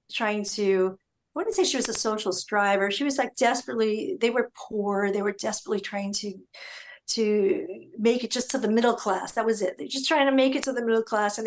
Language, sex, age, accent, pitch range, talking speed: English, female, 50-69, American, 200-260 Hz, 230 wpm